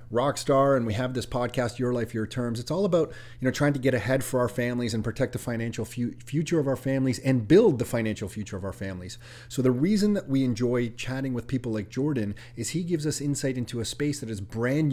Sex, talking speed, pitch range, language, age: male, 245 wpm, 115-135 Hz, English, 30-49